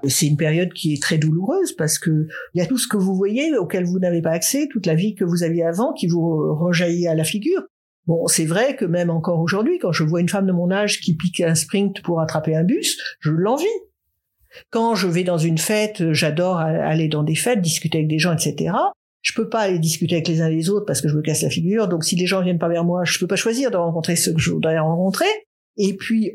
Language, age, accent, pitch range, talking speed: French, 50-69, French, 170-240 Hz, 260 wpm